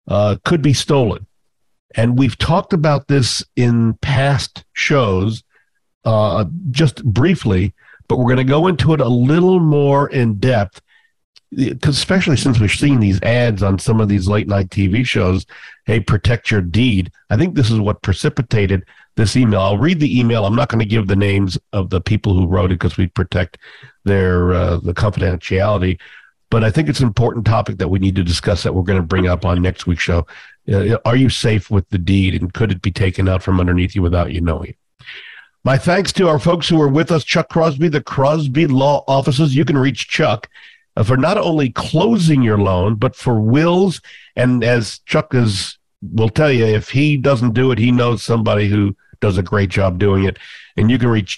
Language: English